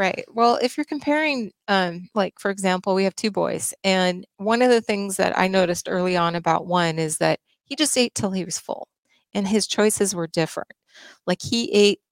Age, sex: 30-49, female